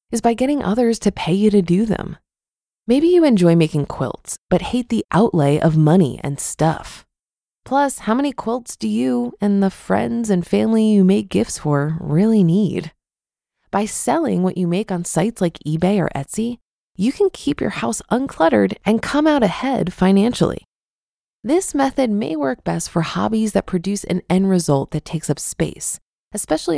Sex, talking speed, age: female, 175 wpm, 20-39